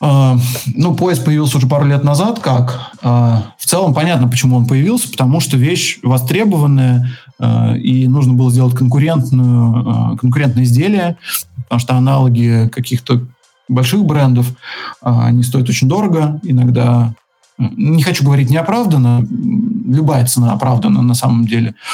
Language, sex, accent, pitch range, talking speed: Russian, male, native, 120-140 Hz, 125 wpm